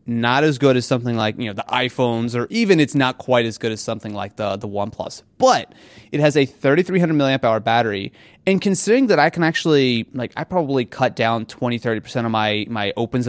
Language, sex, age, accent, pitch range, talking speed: English, male, 30-49, American, 115-160 Hz, 210 wpm